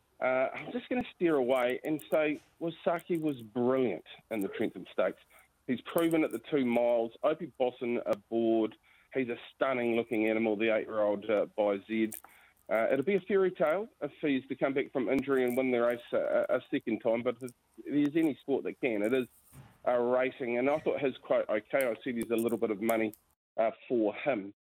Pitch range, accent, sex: 115-145 Hz, Australian, male